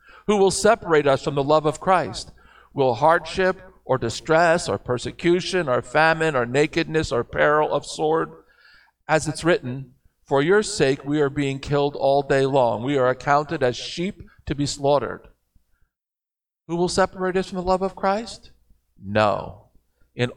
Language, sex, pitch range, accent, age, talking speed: English, male, 120-175 Hz, American, 50-69, 160 wpm